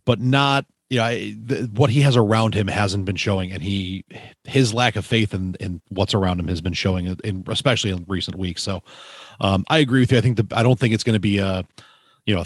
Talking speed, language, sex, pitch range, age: 255 wpm, English, male, 95-130 Hz, 30-49